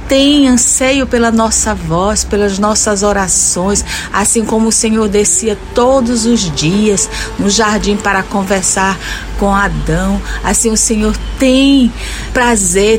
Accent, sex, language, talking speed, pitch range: Brazilian, female, Portuguese, 125 wpm, 210-245 Hz